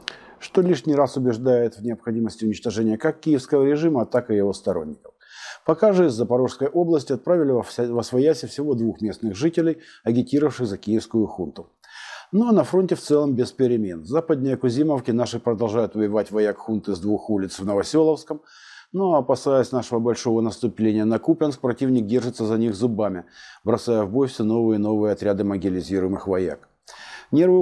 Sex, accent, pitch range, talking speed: male, native, 105-130 Hz, 155 wpm